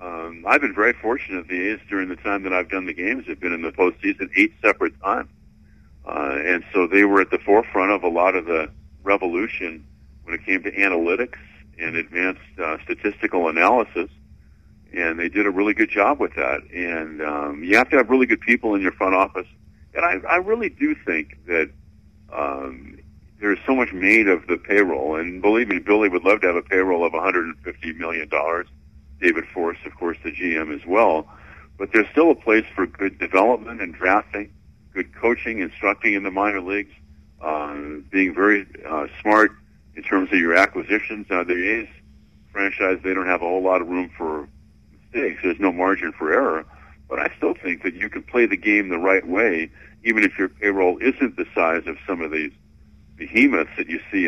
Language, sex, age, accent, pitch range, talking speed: English, male, 60-79, American, 75-100 Hz, 195 wpm